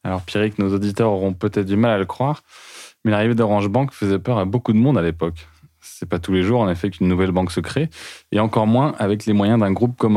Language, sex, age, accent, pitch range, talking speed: French, male, 20-39, French, 95-115 Hz, 260 wpm